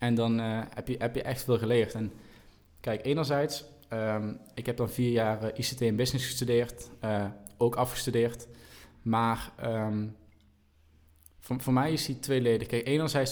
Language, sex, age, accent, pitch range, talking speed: Dutch, male, 20-39, Dutch, 110-125 Hz, 165 wpm